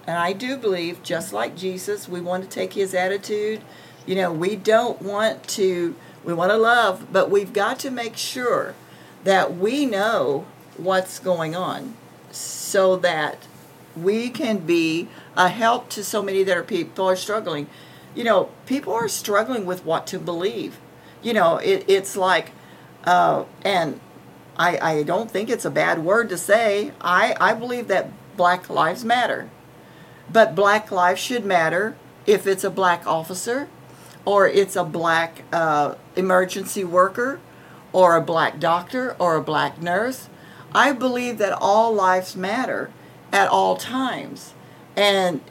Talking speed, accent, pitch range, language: 155 wpm, American, 175-220 Hz, English